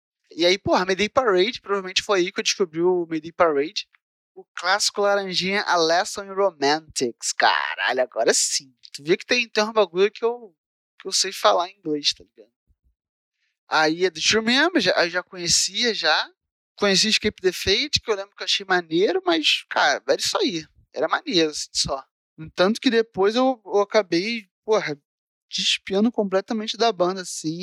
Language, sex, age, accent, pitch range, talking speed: Portuguese, male, 20-39, Brazilian, 155-215 Hz, 175 wpm